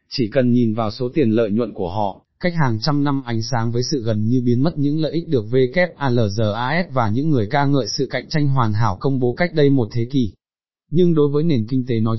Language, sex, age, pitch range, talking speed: Vietnamese, male, 20-39, 110-145 Hz, 250 wpm